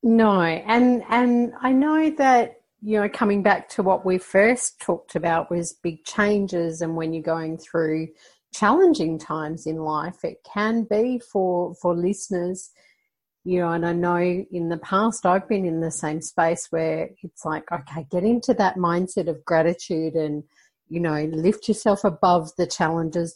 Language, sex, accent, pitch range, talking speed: English, female, Australian, 170-210 Hz, 170 wpm